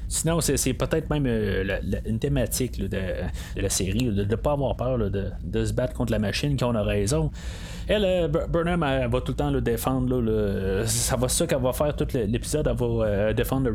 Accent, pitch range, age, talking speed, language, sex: Canadian, 105-145 Hz, 30-49, 255 wpm, French, male